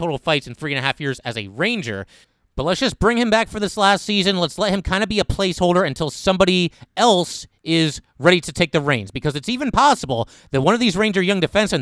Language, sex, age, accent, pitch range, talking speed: English, male, 30-49, American, 140-180 Hz, 250 wpm